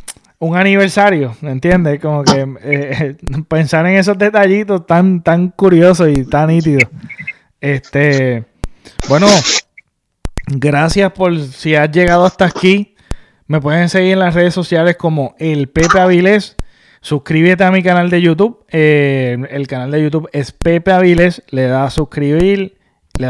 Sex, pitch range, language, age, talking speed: male, 145-180 Hz, Spanish, 20-39, 145 wpm